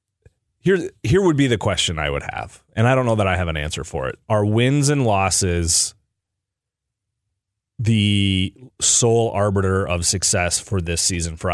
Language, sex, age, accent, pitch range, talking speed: English, male, 30-49, American, 90-110 Hz, 170 wpm